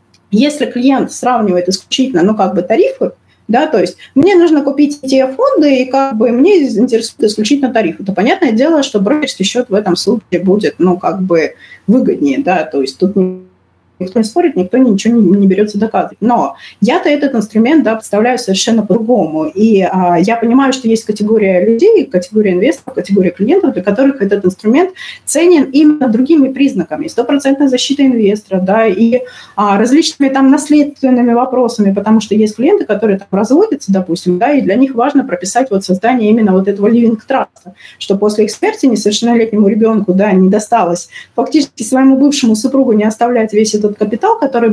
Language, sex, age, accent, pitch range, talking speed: Russian, female, 30-49, native, 195-265 Hz, 170 wpm